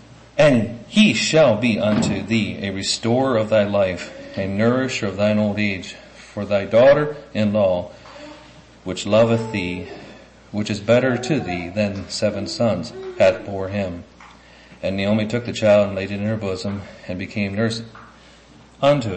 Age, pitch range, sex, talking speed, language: 40-59, 100-120 Hz, male, 155 wpm, English